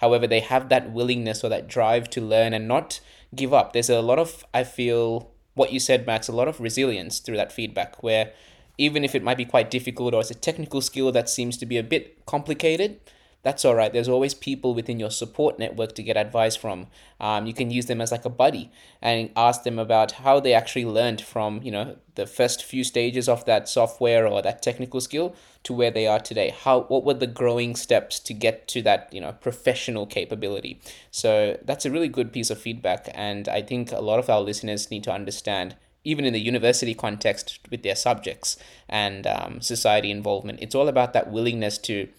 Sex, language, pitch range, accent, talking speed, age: male, English, 110-130 Hz, Australian, 215 wpm, 20-39